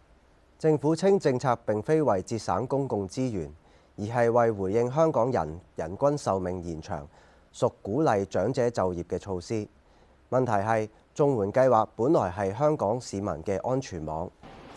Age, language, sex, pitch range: 30-49, Chinese, male, 90-135 Hz